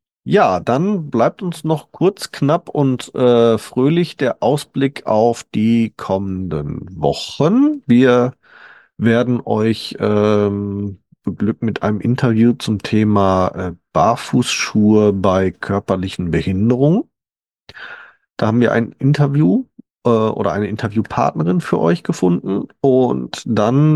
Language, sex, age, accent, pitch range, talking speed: German, male, 40-59, German, 100-125 Hz, 115 wpm